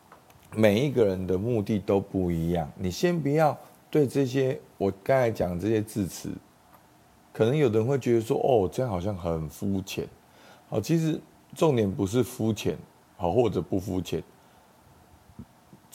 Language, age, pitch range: Chinese, 50-69, 85-115 Hz